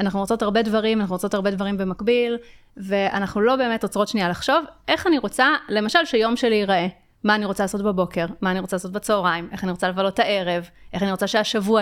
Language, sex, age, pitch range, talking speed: Hebrew, female, 30-49, 190-240 Hz, 205 wpm